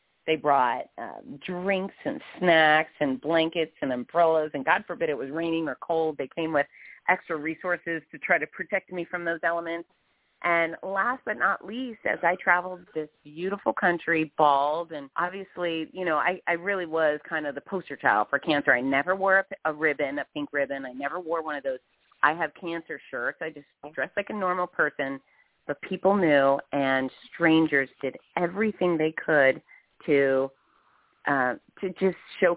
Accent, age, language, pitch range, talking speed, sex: American, 30-49, English, 135-175 Hz, 175 wpm, female